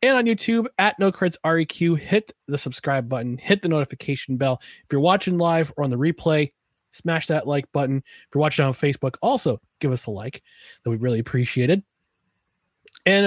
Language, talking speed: English, 190 wpm